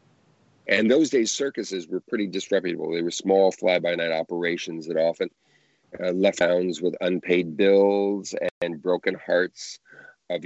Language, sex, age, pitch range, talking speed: English, male, 50-69, 90-110 Hz, 140 wpm